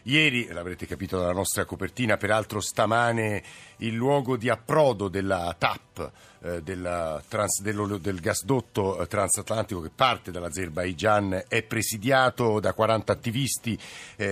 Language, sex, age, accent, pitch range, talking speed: Italian, male, 50-69, native, 100-125 Hz, 120 wpm